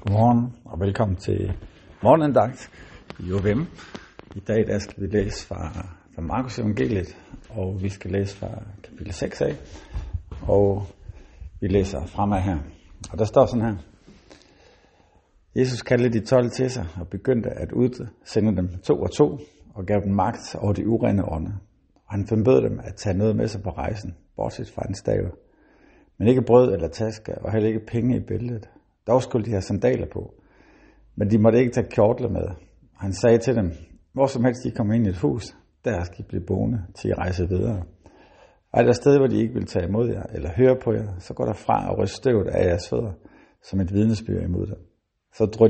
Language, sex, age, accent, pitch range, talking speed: Danish, male, 60-79, native, 95-120 Hz, 190 wpm